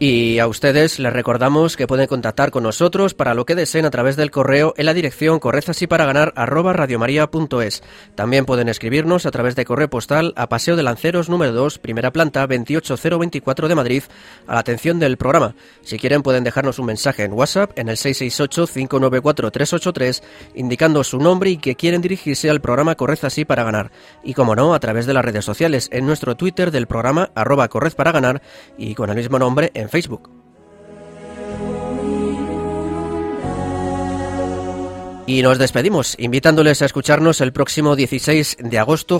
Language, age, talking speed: Spanish, 30-49, 160 wpm